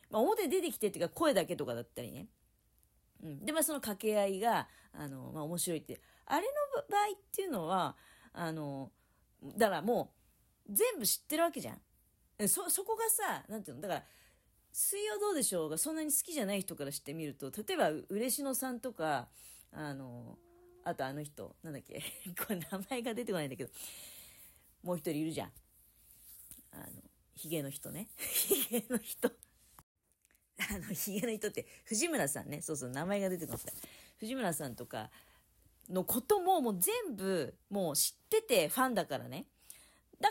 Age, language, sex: 40-59, Japanese, female